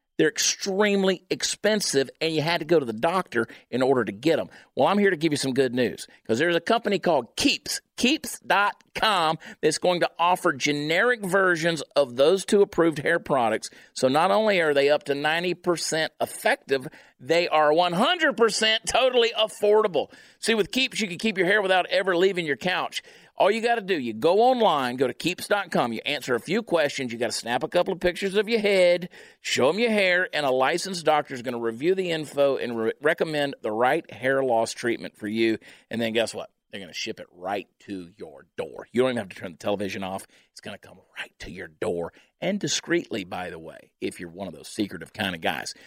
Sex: male